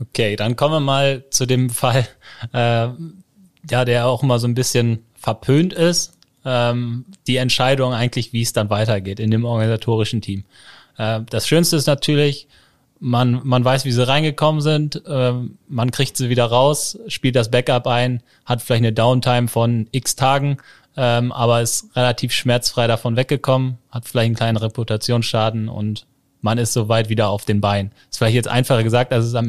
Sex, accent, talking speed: male, German, 180 wpm